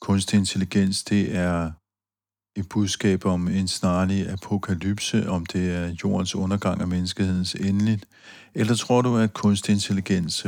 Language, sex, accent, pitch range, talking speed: Danish, male, native, 90-100 Hz, 135 wpm